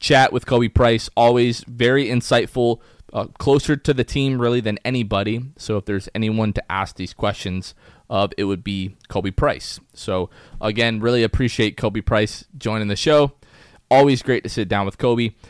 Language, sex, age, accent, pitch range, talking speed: English, male, 20-39, American, 110-130 Hz, 175 wpm